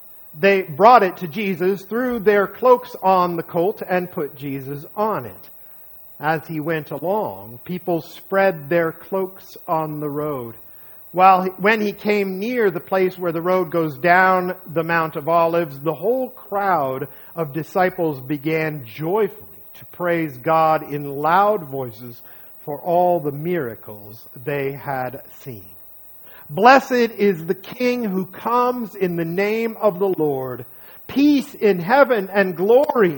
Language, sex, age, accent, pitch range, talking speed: English, male, 50-69, American, 120-190 Hz, 145 wpm